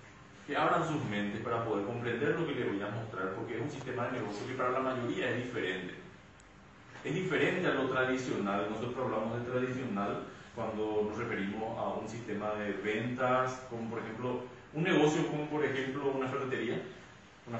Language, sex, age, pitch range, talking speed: Spanish, male, 30-49, 110-150 Hz, 180 wpm